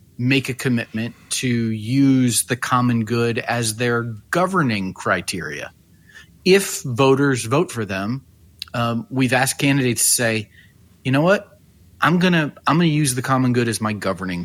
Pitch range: 95-130 Hz